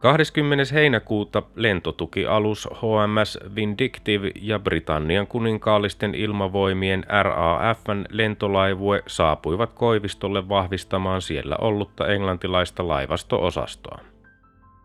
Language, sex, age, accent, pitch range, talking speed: Finnish, male, 30-49, native, 95-110 Hz, 75 wpm